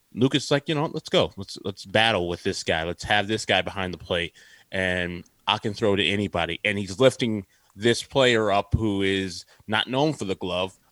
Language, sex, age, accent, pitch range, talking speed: English, male, 30-49, American, 100-125 Hz, 215 wpm